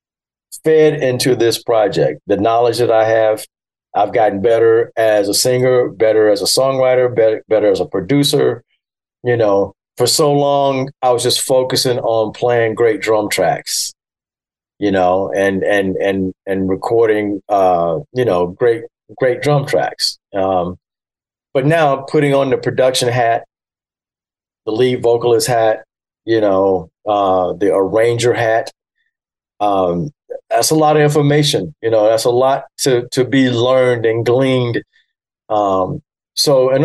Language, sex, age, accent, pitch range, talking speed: English, male, 40-59, American, 105-130 Hz, 145 wpm